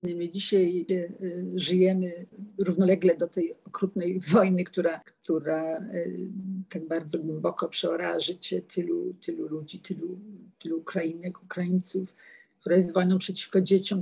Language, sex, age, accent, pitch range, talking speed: Polish, female, 50-69, native, 175-195 Hz, 110 wpm